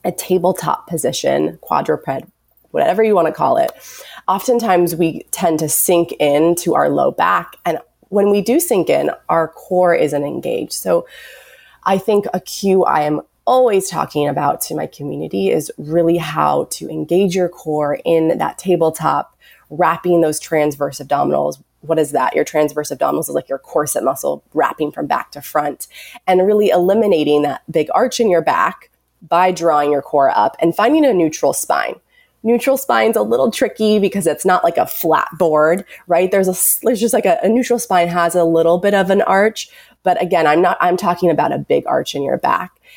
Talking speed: 185 wpm